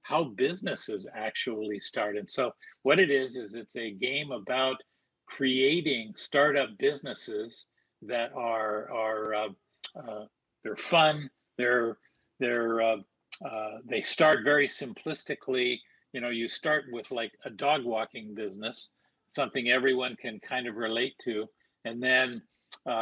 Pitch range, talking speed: 110-135 Hz, 135 wpm